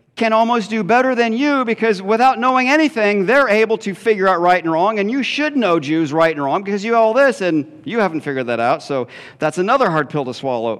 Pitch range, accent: 145-215 Hz, American